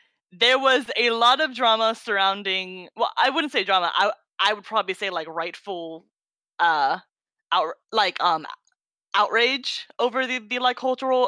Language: English